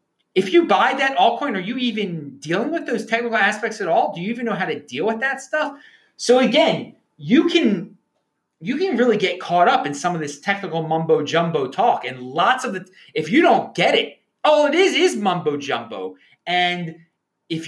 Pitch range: 145-225 Hz